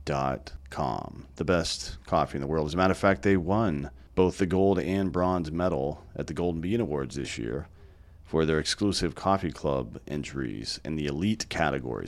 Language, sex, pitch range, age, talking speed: English, male, 75-95 Hz, 40-59, 190 wpm